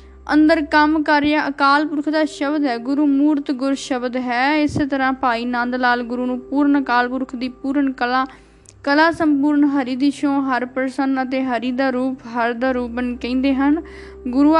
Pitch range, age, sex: 245-280 Hz, 10-29, female